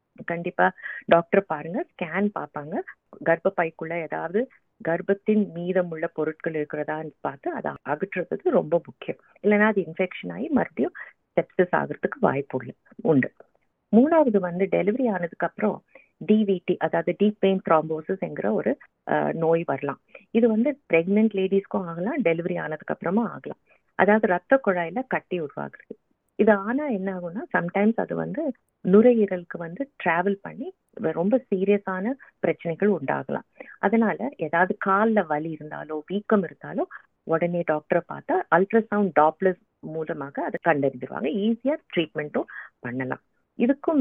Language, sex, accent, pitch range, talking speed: Tamil, female, native, 165-220 Hz, 120 wpm